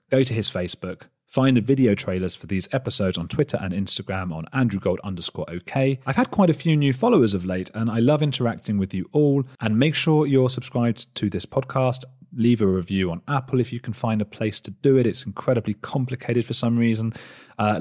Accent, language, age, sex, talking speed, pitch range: British, English, 30-49, male, 210 wpm, 95-130 Hz